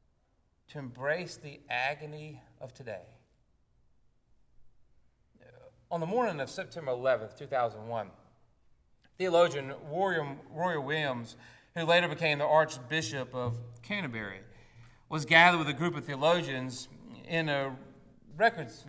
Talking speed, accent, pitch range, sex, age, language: 105 wpm, American, 125-165 Hz, male, 40-59, English